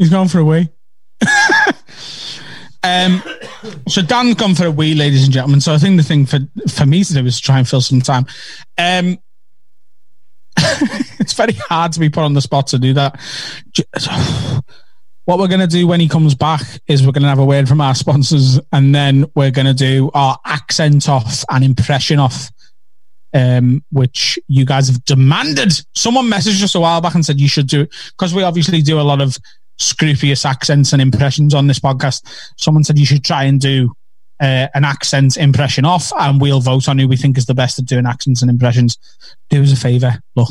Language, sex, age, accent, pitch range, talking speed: English, male, 20-39, British, 130-155 Hz, 210 wpm